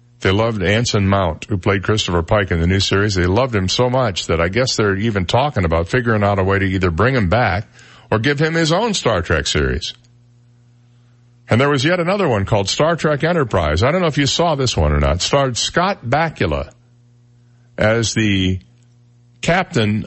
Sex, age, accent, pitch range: male, 50-69, American, 105-140 Hz